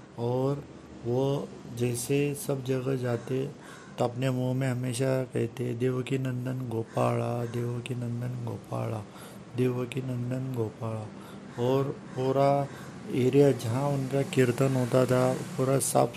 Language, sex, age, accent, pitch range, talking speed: Hindi, male, 50-69, native, 120-135 Hz, 125 wpm